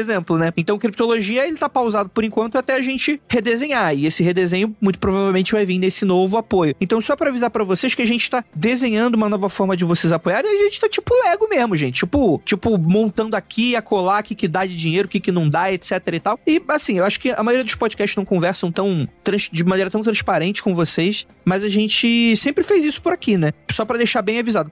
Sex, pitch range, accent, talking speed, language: male, 180-225 Hz, Brazilian, 245 wpm, Portuguese